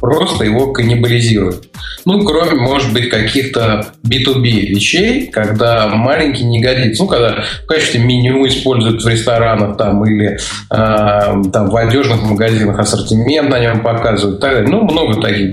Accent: native